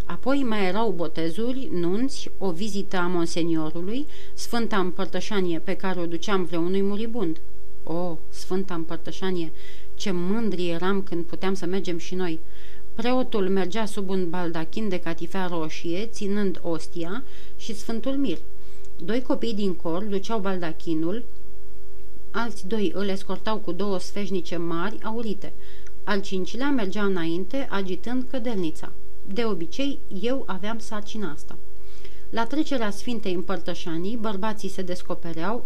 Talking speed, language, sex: 130 wpm, Romanian, female